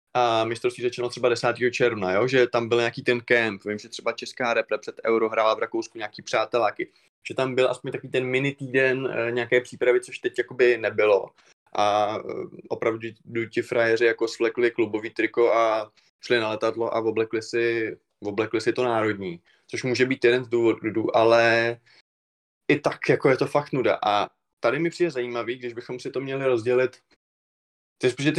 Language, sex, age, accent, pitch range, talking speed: Czech, male, 20-39, native, 110-130 Hz, 180 wpm